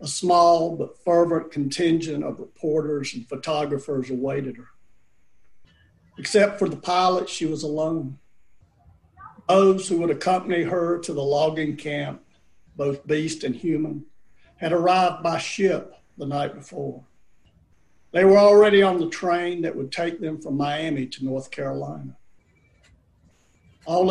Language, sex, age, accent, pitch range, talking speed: English, male, 50-69, American, 140-170 Hz, 135 wpm